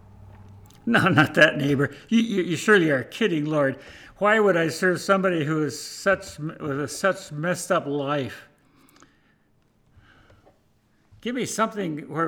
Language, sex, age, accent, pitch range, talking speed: English, male, 60-79, American, 130-165 Hz, 130 wpm